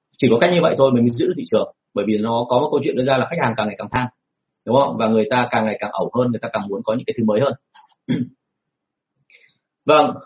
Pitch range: 120-180 Hz